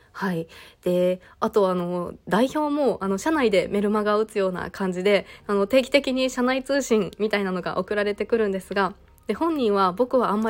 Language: Japanese